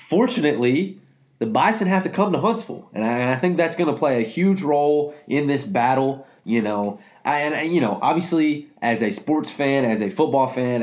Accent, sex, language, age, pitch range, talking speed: American, male, English, 20-39, 115-150 Hz, 205 wpm